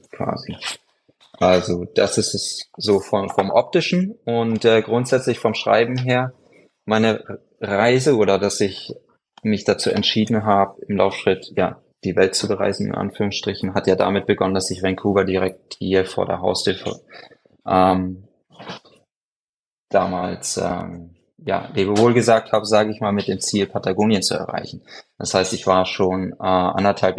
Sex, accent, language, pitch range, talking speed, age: male, German, German, 90-100 Hz, 150 wpm, 20-39